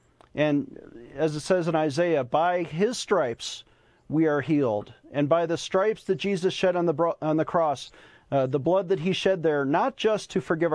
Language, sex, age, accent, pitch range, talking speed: English, male, 40-59, American, 150-190 Hz, 200 wpm